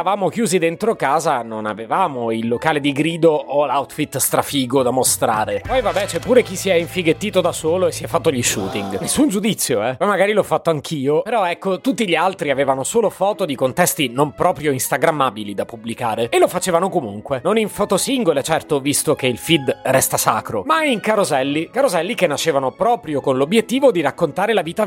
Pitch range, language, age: 135-195 Hz, Italian, 30-49